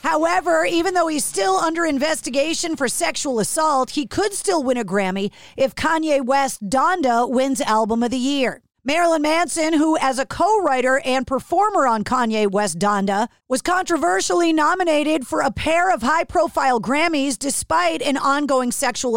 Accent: American